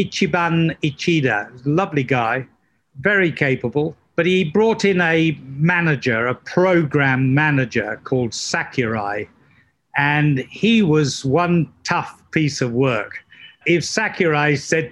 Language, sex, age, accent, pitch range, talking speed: English, male, 50-69, British, 135-175 Hz, 115 wpm